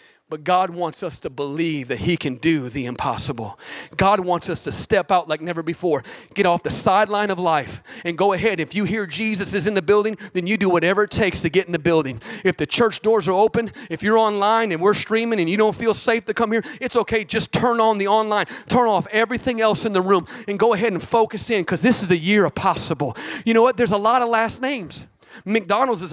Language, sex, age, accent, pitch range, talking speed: English, male, 40-59, American, 185-240 Hz, 245 wpm